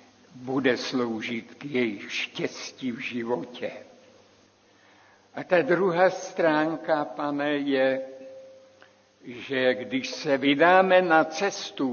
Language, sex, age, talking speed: Czech, male, 60-79, 95 wpm